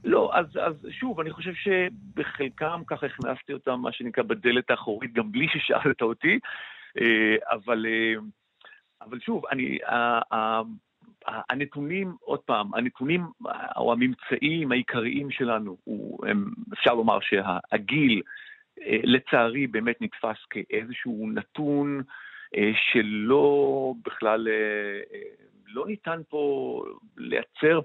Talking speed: 105 wpm